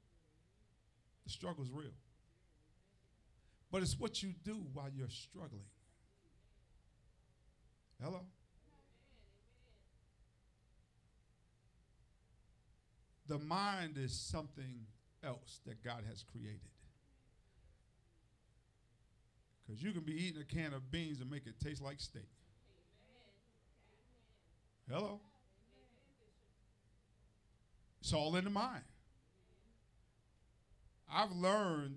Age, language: 50-69, English